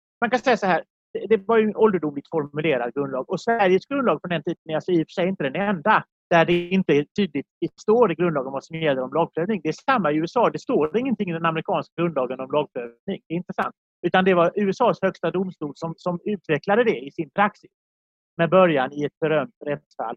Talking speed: 230 wpm